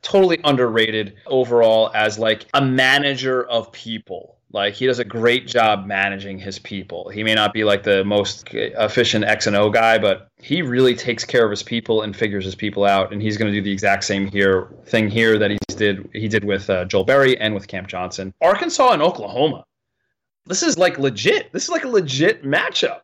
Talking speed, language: 210 wpm, English